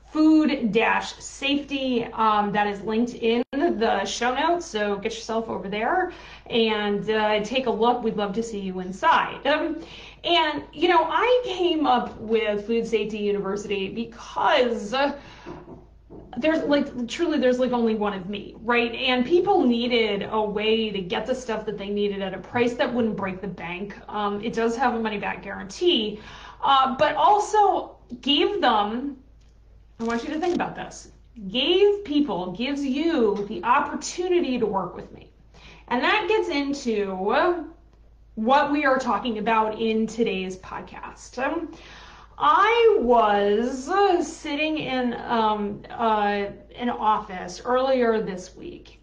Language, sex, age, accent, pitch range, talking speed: English, female, 30-49, American, 215-290 Hz, 145 wpm